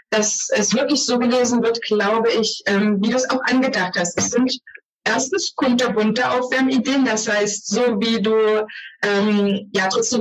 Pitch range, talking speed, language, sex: 200-240 Hz, 165 wpm, German, female